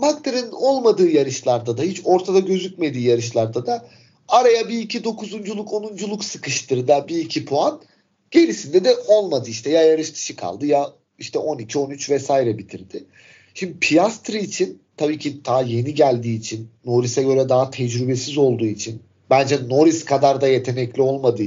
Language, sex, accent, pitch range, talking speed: Turkish, male, native, 125-170 Hz, 155 wpm